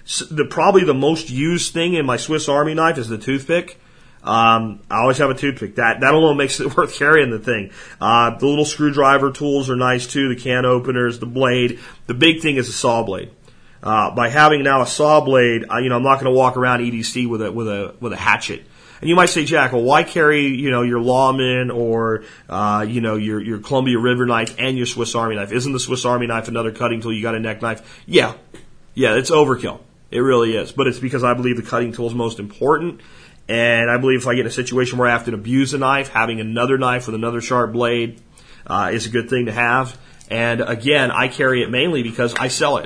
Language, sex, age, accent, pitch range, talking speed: English, male, 40-59, American, 120-145 Hz, 240 wpm